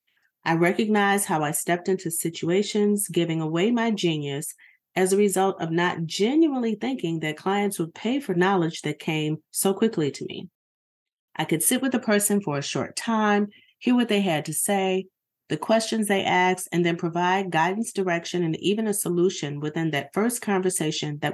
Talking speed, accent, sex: 180 wpm, American, female